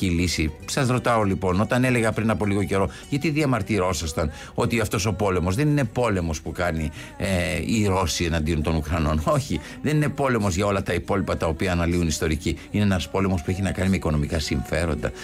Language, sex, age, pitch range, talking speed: Greek, male, 60-79, 90-135 Hz, 195 wpm